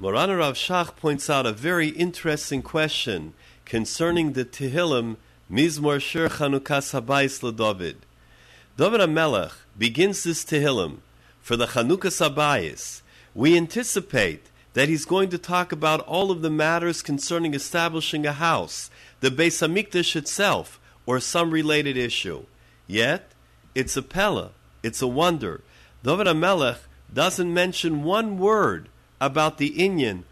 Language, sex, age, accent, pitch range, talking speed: English, male, 50-69, American, 125-170 Hz, 130 wpm